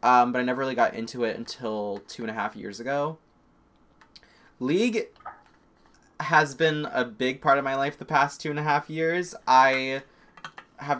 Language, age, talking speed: English, 20-39, 180 wpm